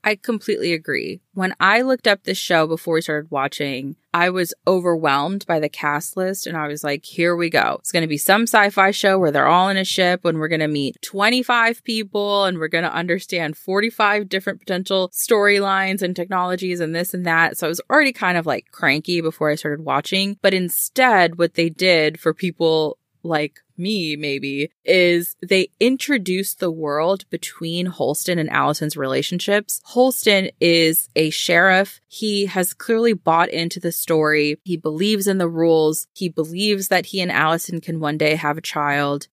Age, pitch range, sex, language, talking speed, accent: 20-39, 160-195 Hz, female, English, 185 wpm, American